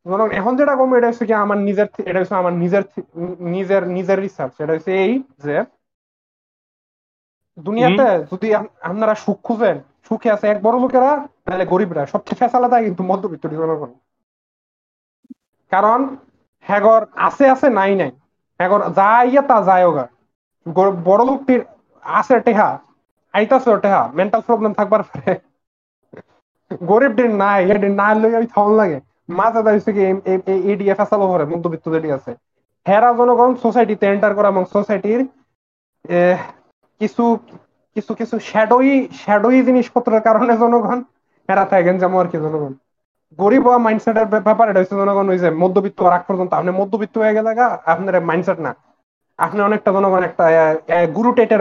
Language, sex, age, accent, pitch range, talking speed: Bengali, male, 30-49, native, 180-230 Hz, 75 wpm